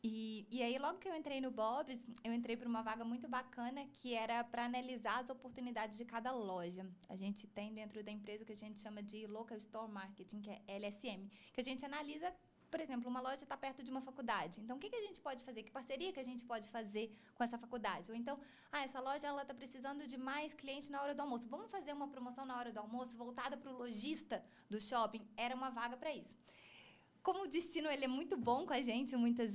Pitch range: 220-270 Hz